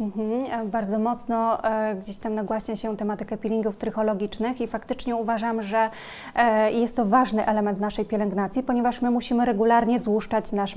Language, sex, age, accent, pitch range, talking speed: Polish, female, 20-39, native, 210-230 Hz, 140 wpm